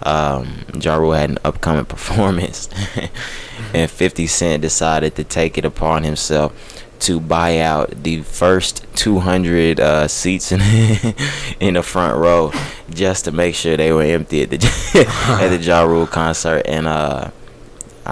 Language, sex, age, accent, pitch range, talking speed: English, male, 20-39, American, 75-85 Hz, 150 wpm